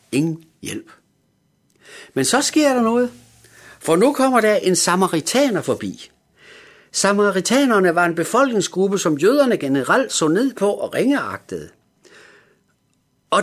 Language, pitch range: Danish, 160-265 Hz